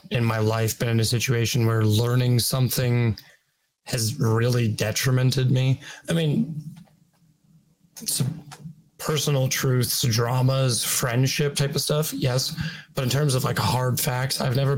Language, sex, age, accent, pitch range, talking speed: English, male, 20-39, American, 115-150 Hz, 140 wpm